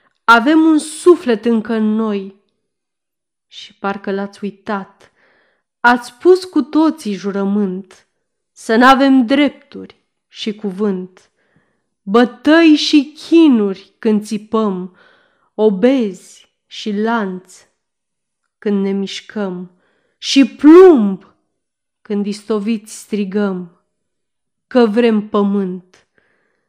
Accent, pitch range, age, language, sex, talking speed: native, 200-290 Hz, 30-49, Romanian, female, 90 wpm